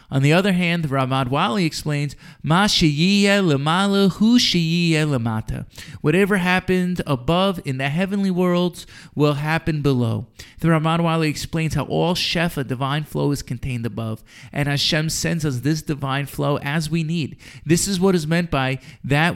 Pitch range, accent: 135-170 Hz, American